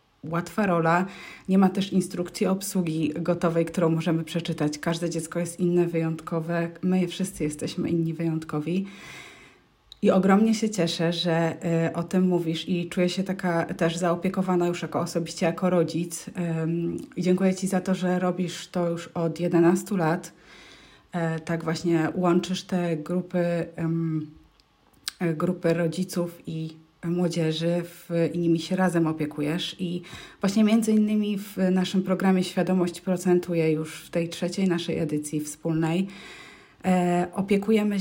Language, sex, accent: Polish, female, native